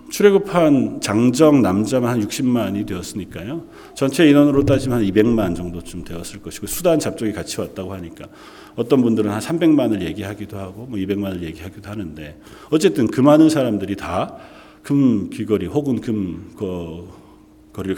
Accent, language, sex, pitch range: native, Korean, male, 105-170 Hz